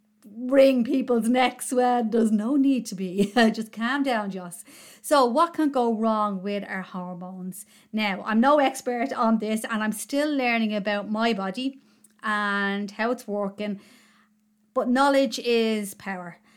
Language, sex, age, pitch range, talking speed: English, female, 30-49, 205-240 Hz, 150 wpm